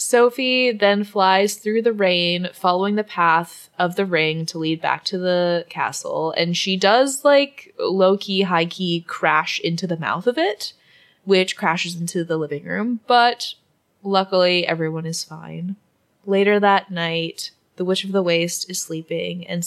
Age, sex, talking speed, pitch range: 20-39, female, 160 wpm, 165-195 Hz